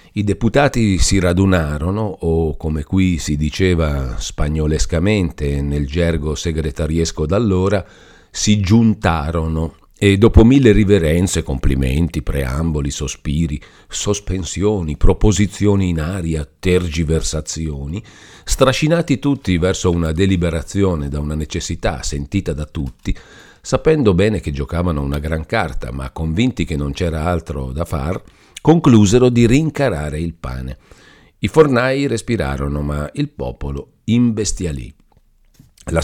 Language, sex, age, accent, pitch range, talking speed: Italian, male, 50-69, native, 75-100 Hz, 110 wpm